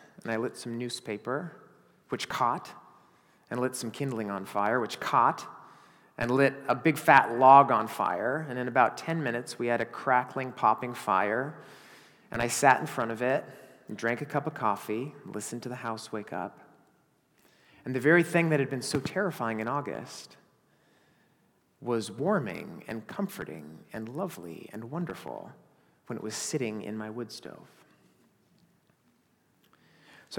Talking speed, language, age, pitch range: 160 wpm, English, 30-49, 120-160 Hz